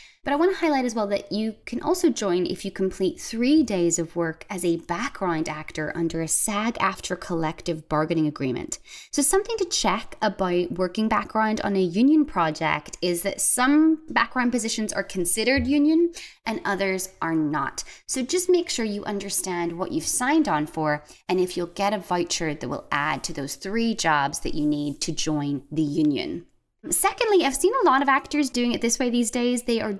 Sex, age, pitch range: female, 20-39, 180-260 Hz